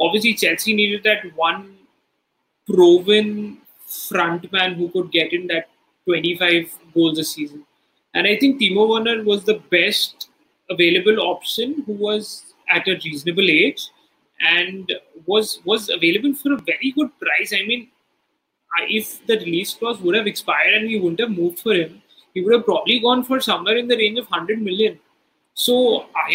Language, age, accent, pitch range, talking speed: English, 30-49, Indian, 175-225 Hz, 165 wpm